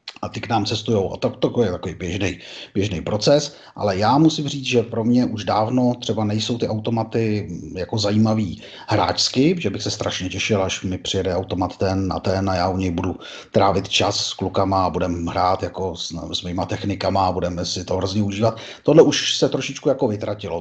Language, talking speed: Slovak, 205 wpm